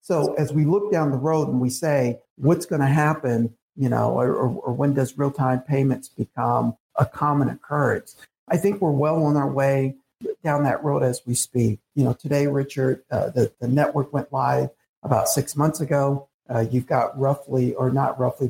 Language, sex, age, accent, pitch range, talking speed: English, male, 60-79, American, 125-145 Hz, 200 wpm